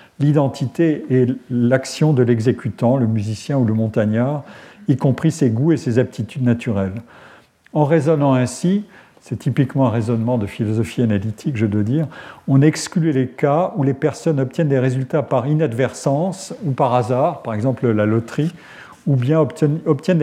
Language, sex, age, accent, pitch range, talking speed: French, male, 50-69, French, 120-150 Hz, 155 wpm